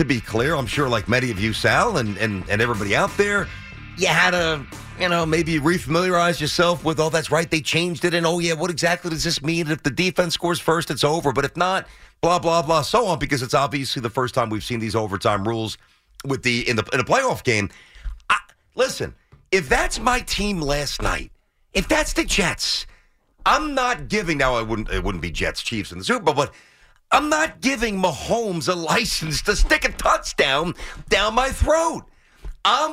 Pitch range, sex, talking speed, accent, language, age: 130-200 Hz, male, 210 wpm, American, English, 50-69